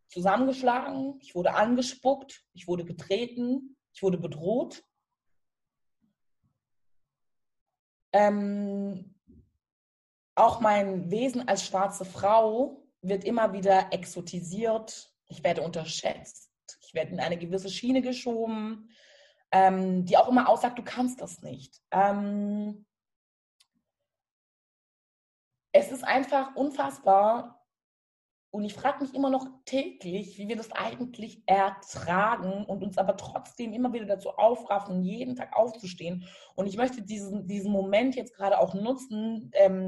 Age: 20-39